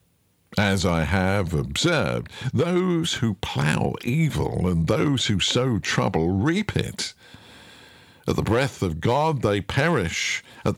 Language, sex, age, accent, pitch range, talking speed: English, male, 50-69, British, 95-130 Hz, 130 wpm